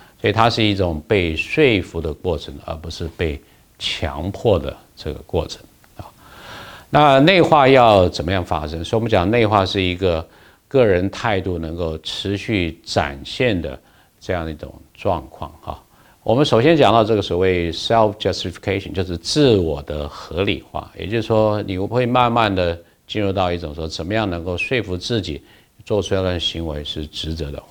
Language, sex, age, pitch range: Chinese, male, 50-69, 80-105 Hz